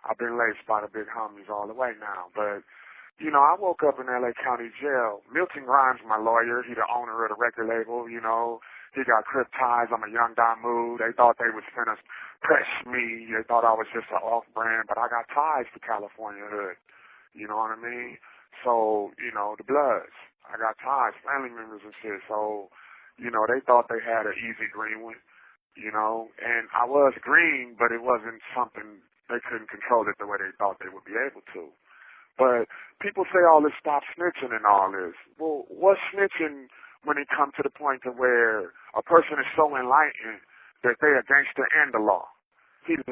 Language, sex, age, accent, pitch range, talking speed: English, male, 20-39, American, 115-155 Hz, 210 wpm